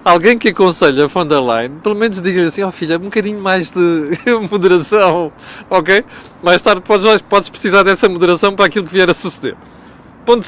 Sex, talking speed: male, 195 wpm